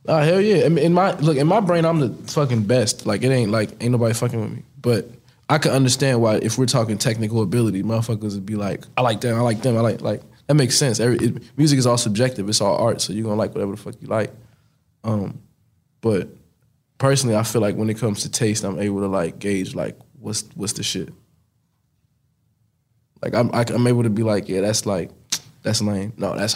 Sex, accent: male, American